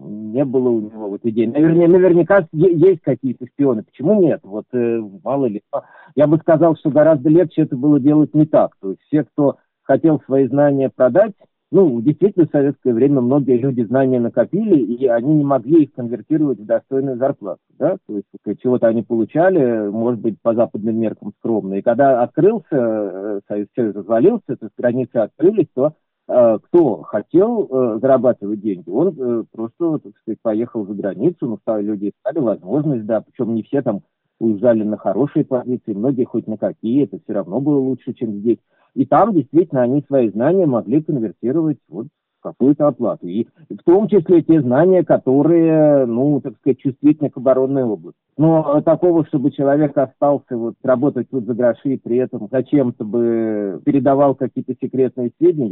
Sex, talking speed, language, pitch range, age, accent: male, 170 wpm, Russian, 115-150 Hz, 50-69, native